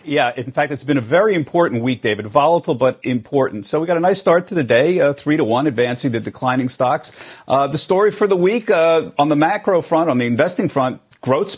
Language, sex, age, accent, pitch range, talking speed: English, male, 50-69, American, 140-195 Hz, 240 wpm